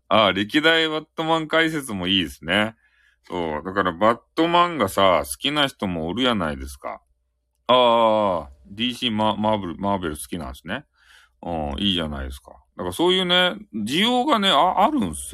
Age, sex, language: 40-59, male, Japanese